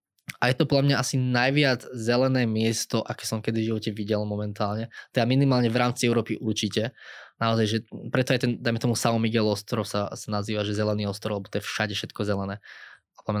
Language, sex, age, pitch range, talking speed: Slovak, male, 20-39, 105-120 Hz, 195 wpm